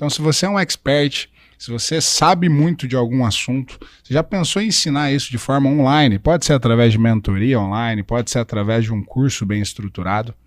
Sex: male